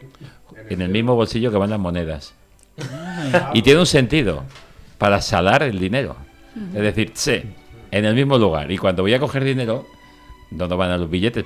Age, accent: 60-79, Spanish